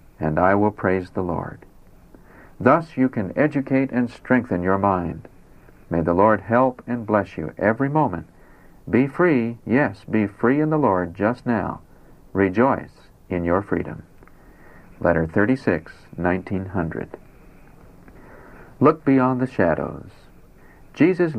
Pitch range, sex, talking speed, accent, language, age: 90-130 Hz, male, 125 wpm, American, English, 60-79